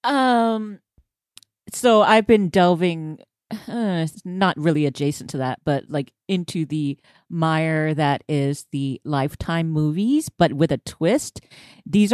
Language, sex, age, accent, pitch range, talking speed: English, female, 30-49, American, 155-190 Hz, 130 wpm